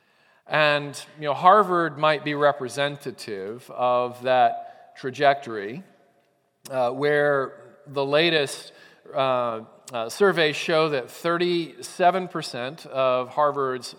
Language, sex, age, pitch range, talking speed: English, male, 40-59, 125-160 Hz, 95 wpm